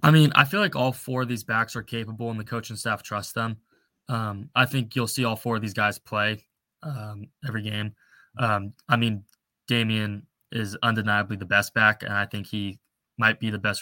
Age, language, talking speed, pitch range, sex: 20-39, English, 215 wpm, 105-120 Hz, male